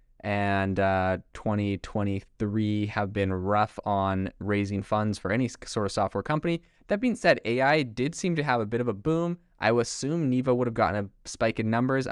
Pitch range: 100-115 Hz